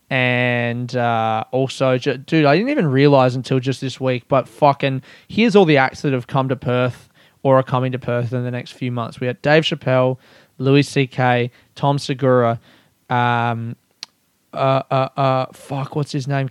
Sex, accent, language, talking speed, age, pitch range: male, Australian, English, 180 wpm, 20-39, 130-150 Hz